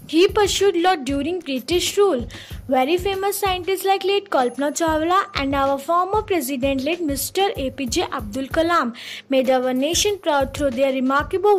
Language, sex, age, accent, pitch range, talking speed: Hindi, female, 20-39, native, 275-365 Hz, 150 wpm